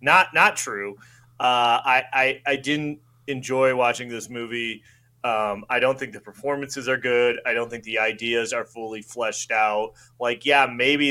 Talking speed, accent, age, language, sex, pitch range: 175 wpm, American, 30-49, English, male, 110-135 Hz